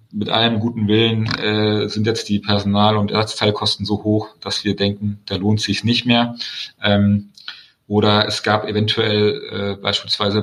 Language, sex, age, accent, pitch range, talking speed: German, male, 30-49, German, 105-125 Hz, 160 wpm